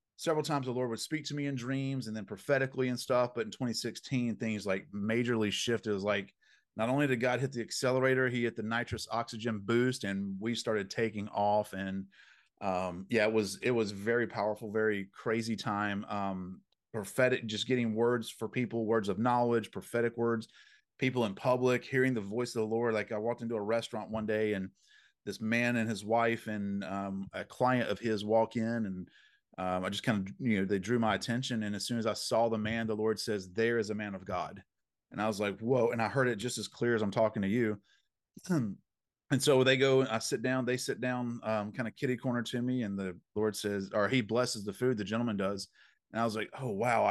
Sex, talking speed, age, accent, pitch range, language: male, 230 wpm, 30-49, American, 105-125 Hz, English